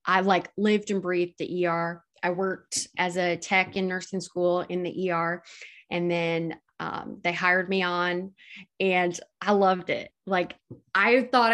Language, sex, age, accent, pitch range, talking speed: English, female, 20-39, American, 175-220 Hz, 165 wpm